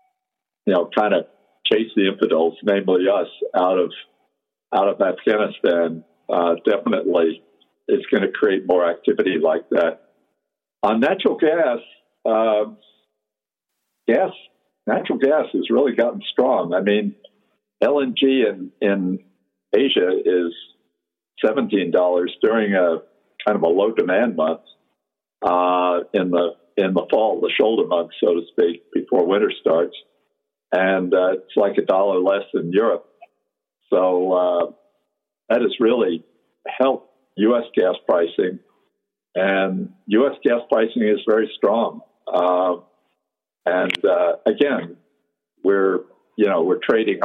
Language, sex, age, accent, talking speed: English, male, 60-79, American, 125 wpm